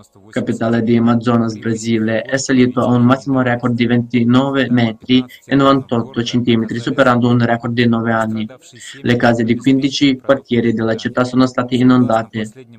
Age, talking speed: 20-39, 150 wpm